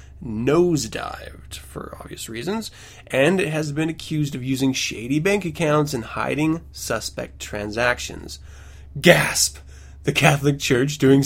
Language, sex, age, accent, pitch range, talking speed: English, male, 20-39, American, 105-165 Hz, 125 wpm